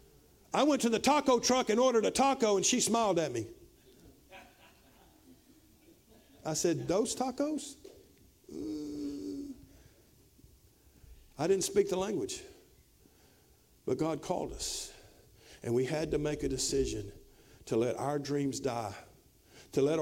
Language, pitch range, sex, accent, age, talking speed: English, 205-270 Hz, male, American, 50-69, 130 wpm